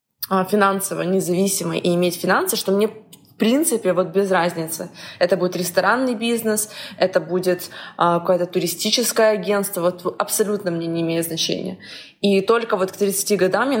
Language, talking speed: Russian, 145 wpm